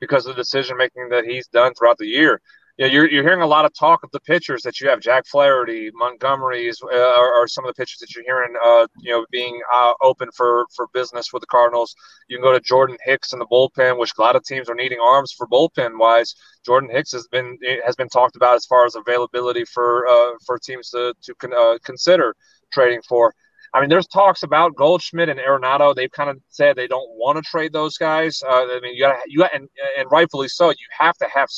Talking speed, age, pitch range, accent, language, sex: 245 wpm, 30-49, 125-165 Hz, American, English, male